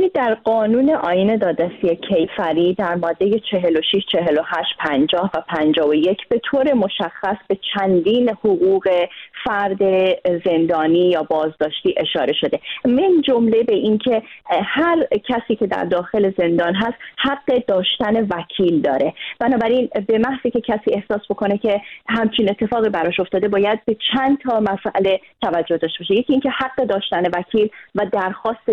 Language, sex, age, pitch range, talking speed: Persian, female, 30-49, 185-230 Hz, 140 wpm